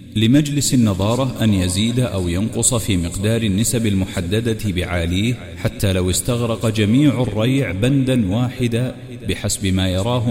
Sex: male